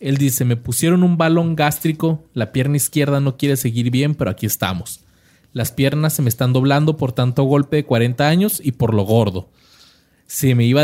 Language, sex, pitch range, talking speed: Spanish, male, 115-145 Hz, 200 wpm